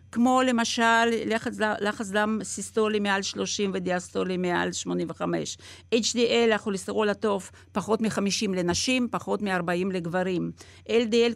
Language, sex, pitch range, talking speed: Hebrew, female, 180-250 Hz, 105 wpm